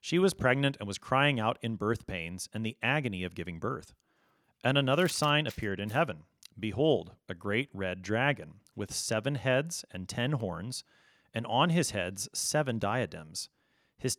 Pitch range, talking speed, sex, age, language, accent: 105-150 Hz, 170 wpm, male, 40-59, English, American